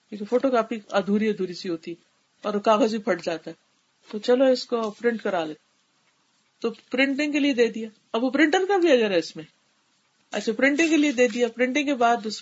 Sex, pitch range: female, 205-275 Hz